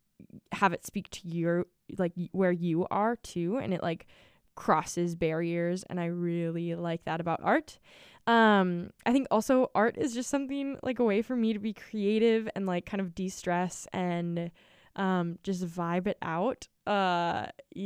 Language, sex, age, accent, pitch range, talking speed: English, female, 10-29, American, 175-235 Hz, 170 wpm